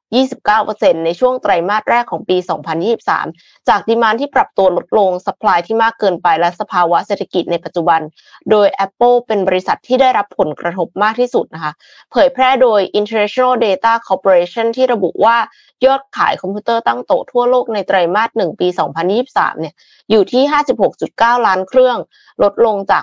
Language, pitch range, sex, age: Thai, 185-255 Hz, female, 20-39